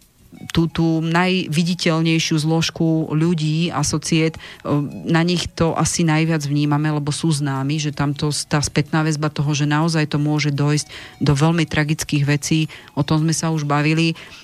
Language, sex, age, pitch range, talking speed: Slovak, female, 40-59, 145-160 Hz, 155 wpm